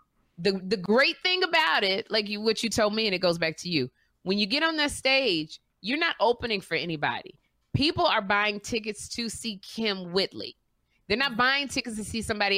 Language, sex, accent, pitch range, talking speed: English, female, American, 170-240 Hz, 210 wpm